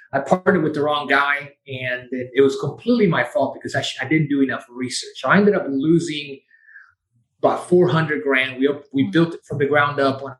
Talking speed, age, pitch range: 215 wpm, 30-49, 135-180 Hz